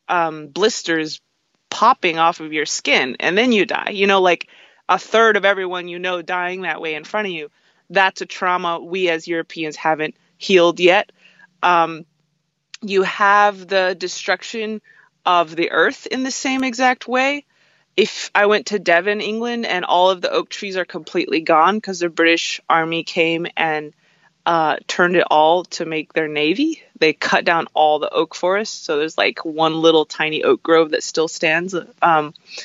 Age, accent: 20-39, American